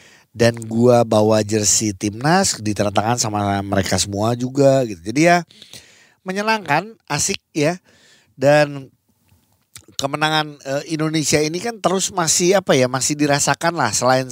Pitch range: 110-150 Hz